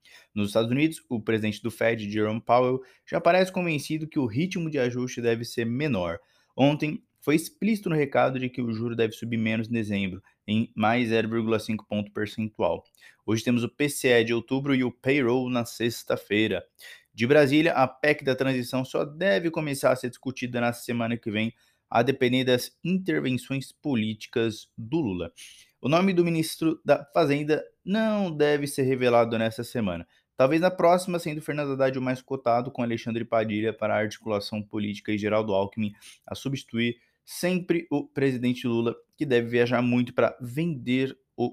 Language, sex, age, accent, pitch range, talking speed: Portuguese, male, 20-39, Brazilian, 115-140 Hz, 170 wpm